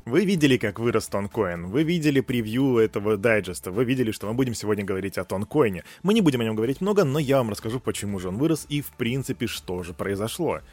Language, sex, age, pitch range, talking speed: Russian, male, 20-39, 105-145 Hz, 225 wpm